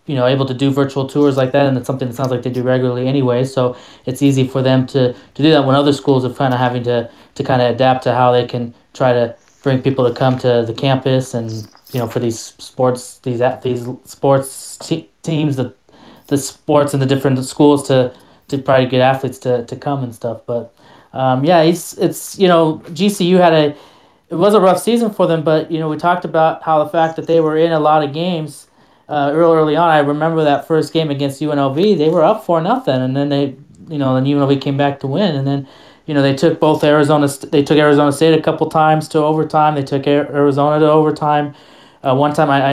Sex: male